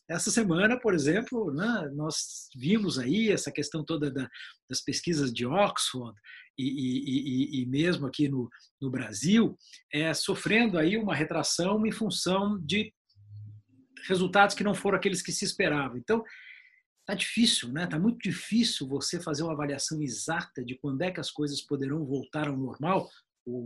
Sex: male